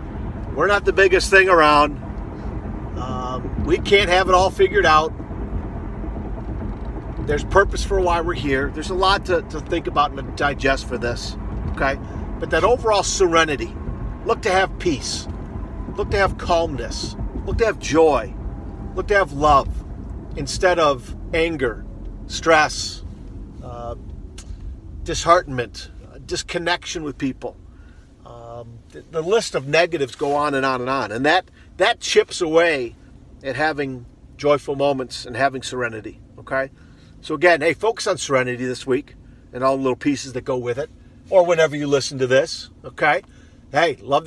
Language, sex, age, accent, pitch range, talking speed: English, male, 50-69, American, 125-175 Hz, 150 wpm